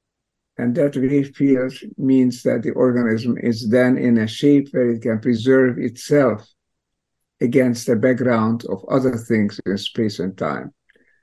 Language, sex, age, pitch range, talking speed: English, male, 50-69, 120-140 Hz, 150 wpm